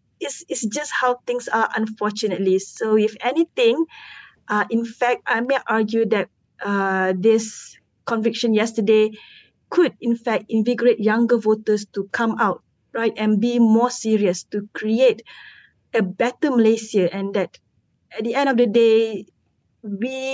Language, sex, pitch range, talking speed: English, female, 195-240 Hz, 145 wpm